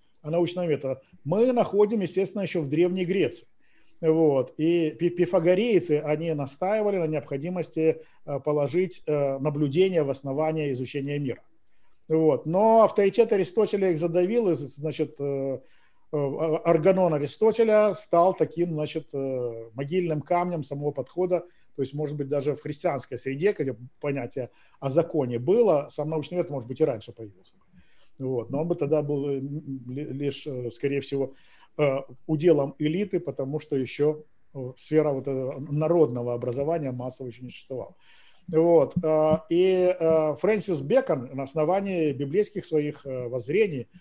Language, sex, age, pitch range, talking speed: Russian, male, 50-69, 140-175 Hz, 120 wpm